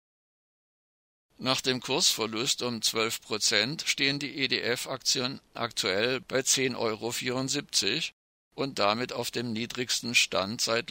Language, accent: German, German